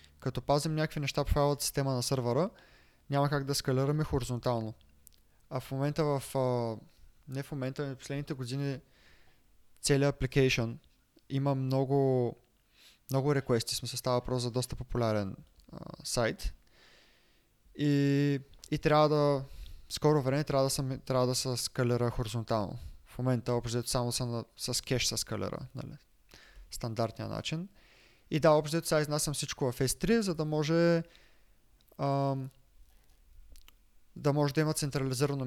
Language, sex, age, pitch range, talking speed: Bulgarian, male, 20-39, 120-145 Hz, 135 wpm